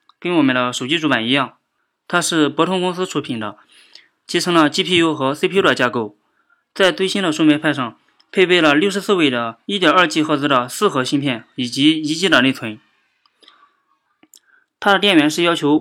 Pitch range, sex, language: 135-185 Hz, male, Chinese